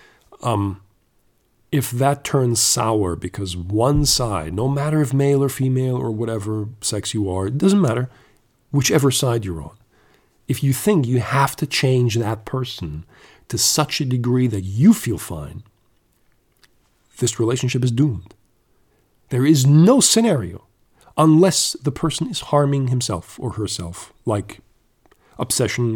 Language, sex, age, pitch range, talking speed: English, male, 40-59, 105-135 Hz, 140 wpm